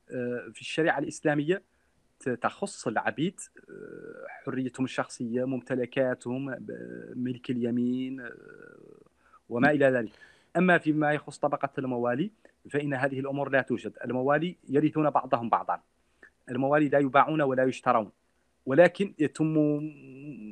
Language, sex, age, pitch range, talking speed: Arabic, male, 40-59, 125-155 Hz, 95 wpm